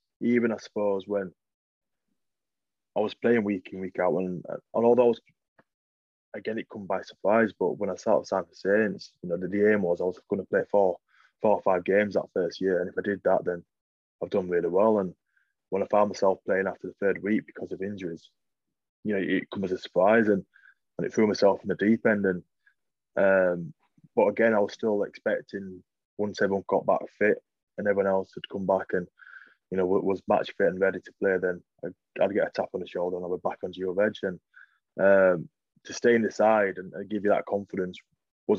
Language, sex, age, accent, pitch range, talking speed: English, male, 20-39, British, 90-115 Hz, 225 wpm